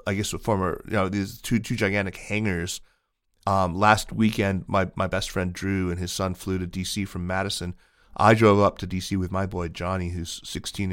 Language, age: English, 30-49